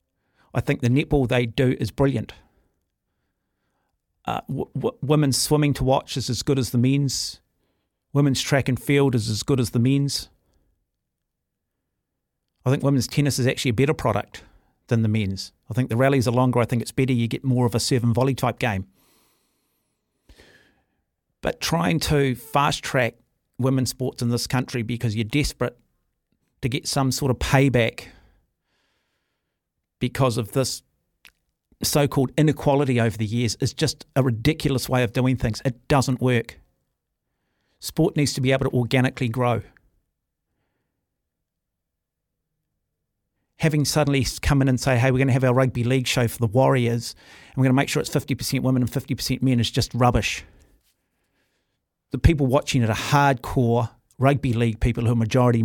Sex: male